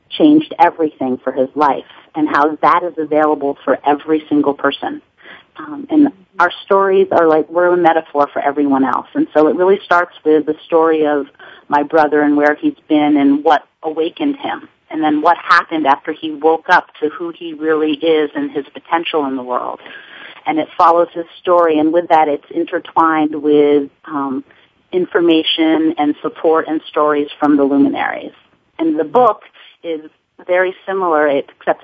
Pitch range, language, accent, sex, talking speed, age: 145-165 Hz, English, American, female, 170 wpm, 40-59